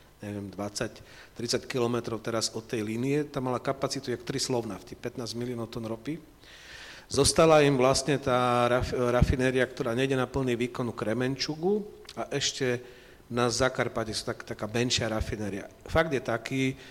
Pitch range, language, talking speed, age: 115-140 Hz, Slovak, 150 wpm, 40-59